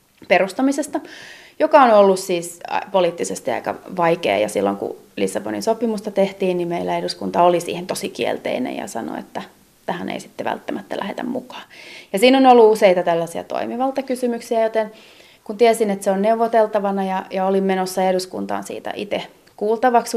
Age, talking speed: 30-49, 155 wpm